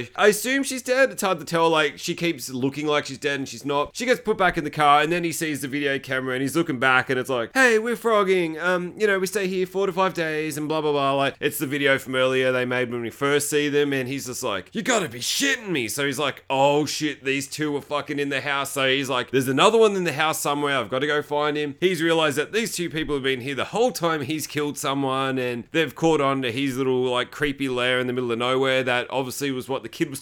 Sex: male